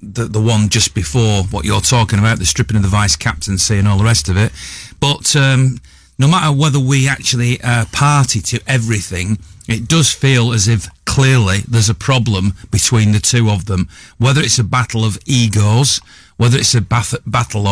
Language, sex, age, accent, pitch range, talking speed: English, male, 40-59, British, 105-125 Hz, 195 wpm